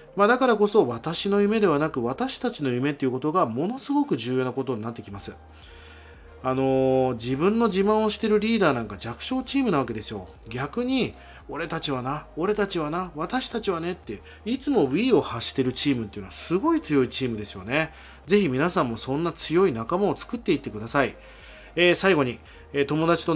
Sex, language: male, Japanese